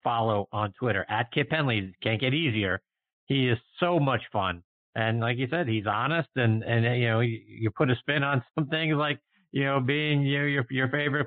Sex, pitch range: male, 120-170 Hz